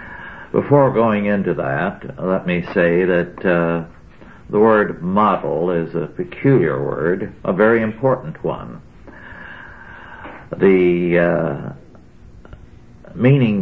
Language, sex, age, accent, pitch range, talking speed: English, male, 60-79, American, 85-105 Hz, 100 wpm